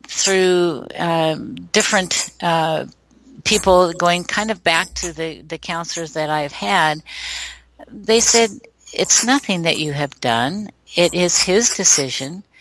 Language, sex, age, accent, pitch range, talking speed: English, female, 60-79, American, 155-190 Hz, 135 wpm